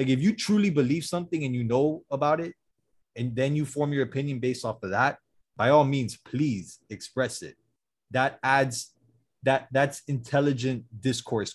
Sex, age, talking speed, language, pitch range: male, 20-39, 170 wpm, English, 120-150 Hz